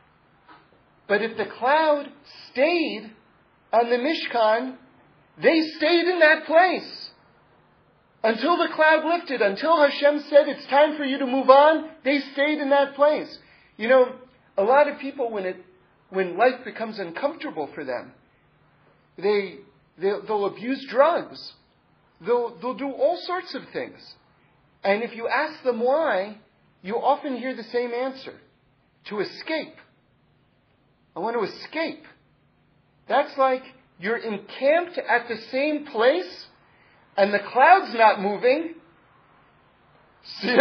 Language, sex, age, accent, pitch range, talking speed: English, male, 40-59, American, 230-315 Hz, 135 wpm